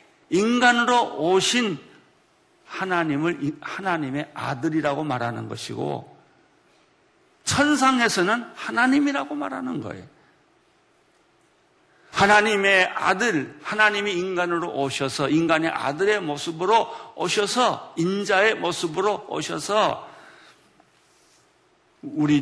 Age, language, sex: 50-69, Korean, male